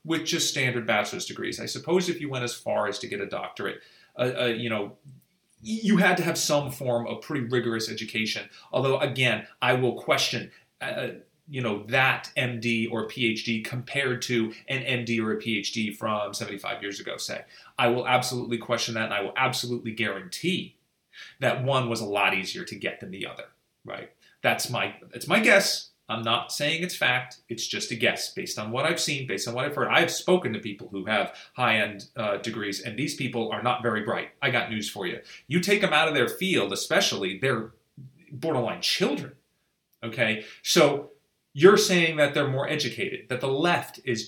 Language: English